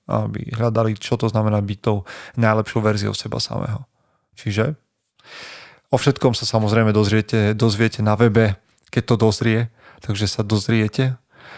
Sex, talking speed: male, 130 wpm